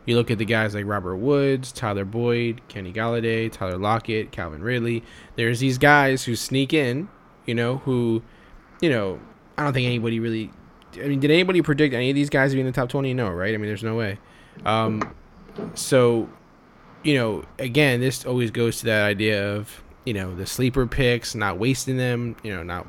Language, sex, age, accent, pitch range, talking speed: English, male, 10-29, American, 105-125 Hz, 200 wpm